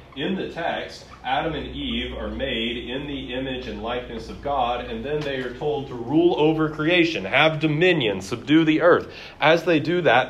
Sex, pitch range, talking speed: male, 100-140 Hz, 190 wpm